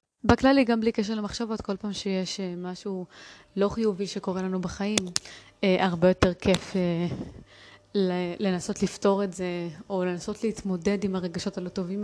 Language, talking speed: Hebrew, 140 wpm